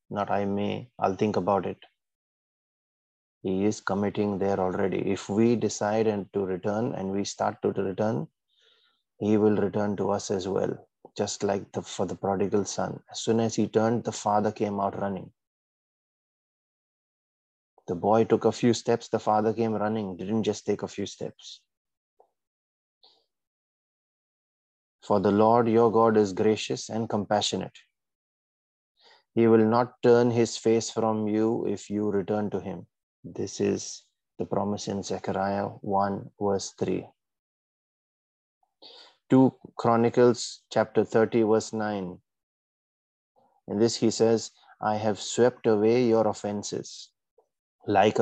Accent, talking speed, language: Indian, 140 wpm, English